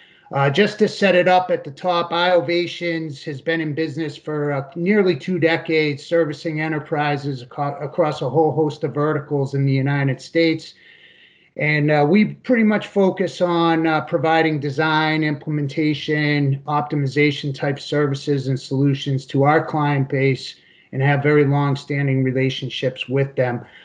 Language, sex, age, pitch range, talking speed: English, male, 30-49, 140-170 Hz, 150 wpm